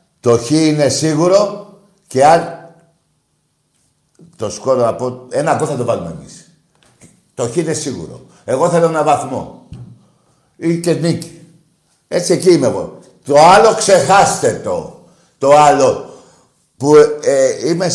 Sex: male